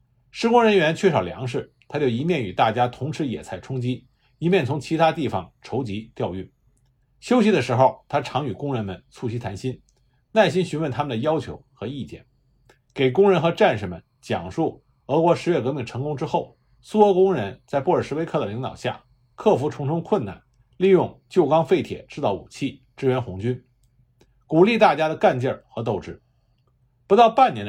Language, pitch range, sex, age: Chinese, 125-170 Hz, male, 50-69